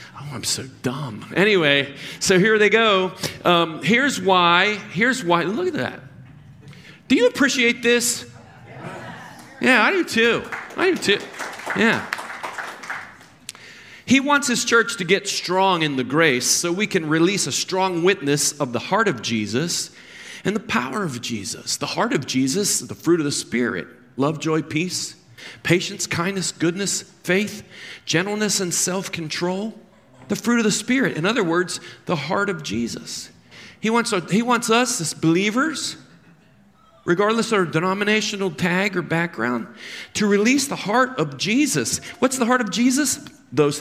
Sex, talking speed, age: male, 155 wpm, 40-59